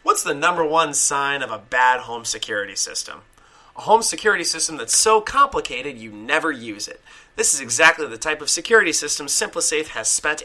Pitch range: 135-200 Hz